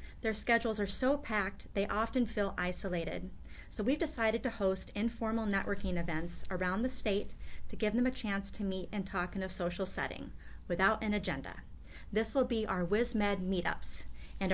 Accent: American